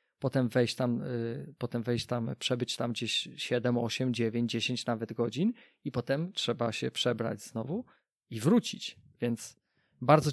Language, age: Polish, 20-39